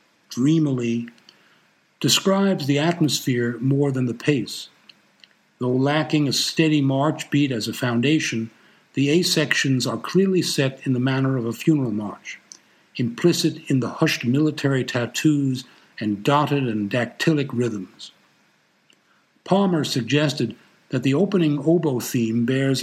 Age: 60-79